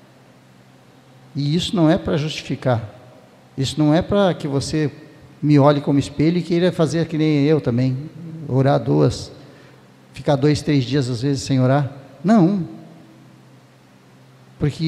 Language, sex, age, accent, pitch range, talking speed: Portuguese, male, 60-79, Brazilian, 120-160 Hz, 140 wpm